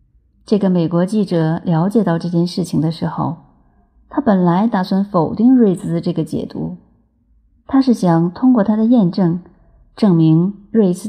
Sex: female